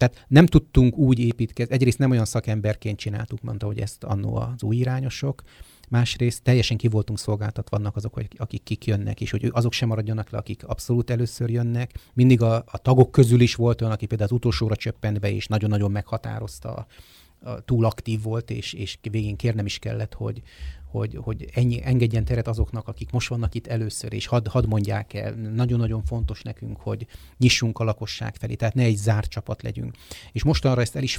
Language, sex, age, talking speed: Hungarian, male, 30-49, 190 wpm